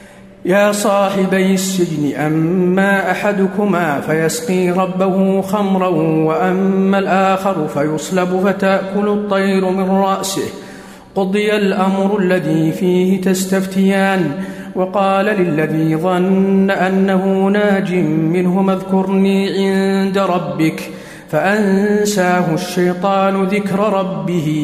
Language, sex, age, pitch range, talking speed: Arabic, male, 50-69, 185-195 Hz, 80 wpm